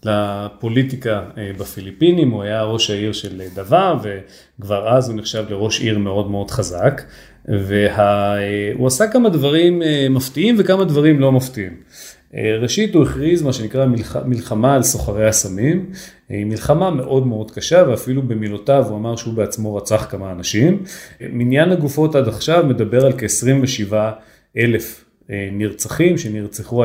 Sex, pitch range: male, 105-135 Hz